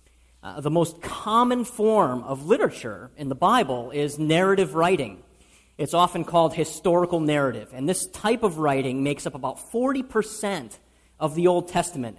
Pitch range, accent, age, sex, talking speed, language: 140-200 Hz, American, 40-59, male, 155 wpm, English